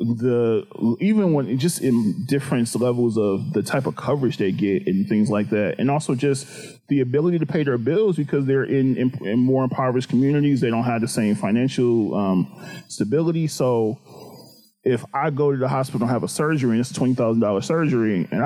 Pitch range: 120-175 Hz